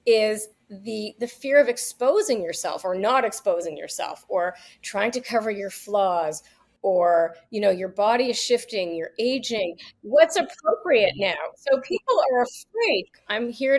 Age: 30-49